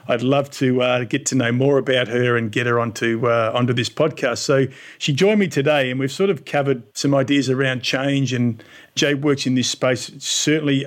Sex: male